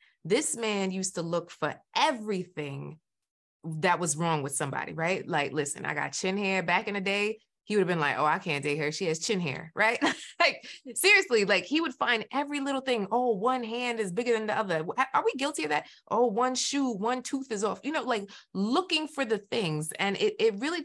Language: English